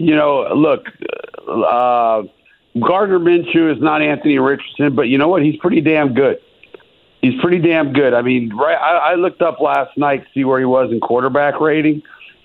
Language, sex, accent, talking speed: English, male, American, 185 wpm